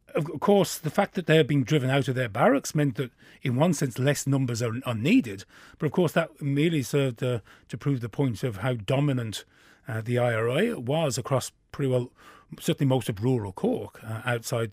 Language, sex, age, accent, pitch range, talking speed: English, male, 40-59, British, 120-150 Hz, 210 wpm